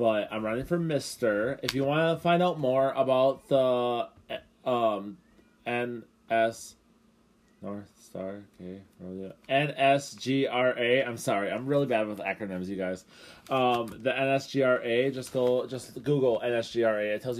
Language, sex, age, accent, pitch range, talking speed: English, male, 20-39, American, 110-135 Hz, 135 wpm